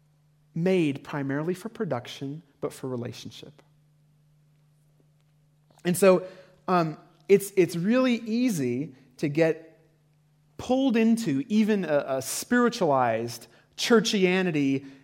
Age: 30-49